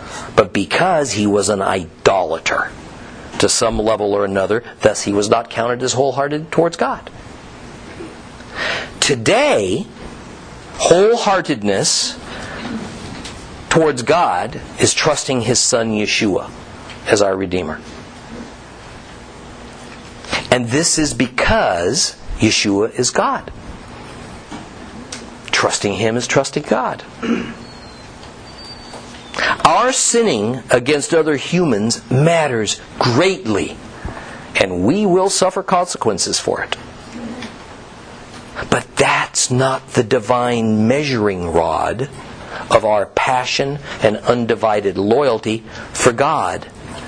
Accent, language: American, English